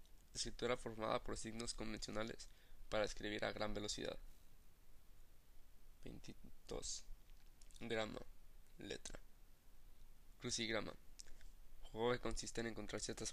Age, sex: 20-39, male